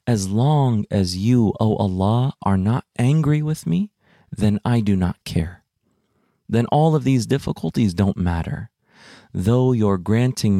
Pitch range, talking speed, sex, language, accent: 95-120 Hz, 145 wpm, male, English, American